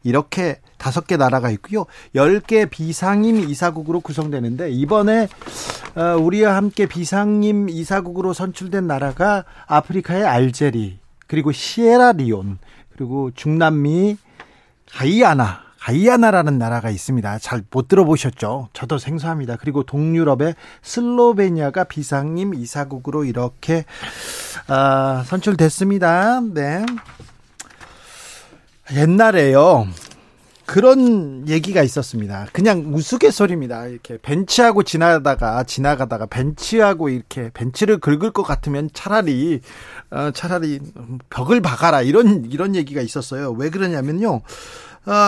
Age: 40-59